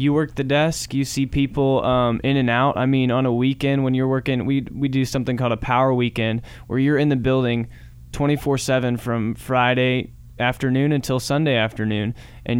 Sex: male